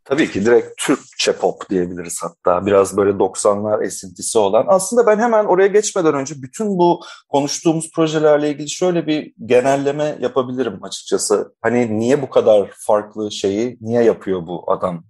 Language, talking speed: Turkish, 150 wpm